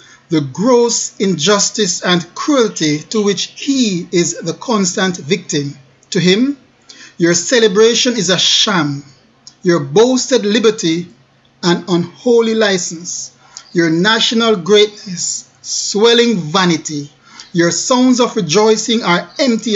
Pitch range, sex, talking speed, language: 160-220 Hz, male, 110 wpm, English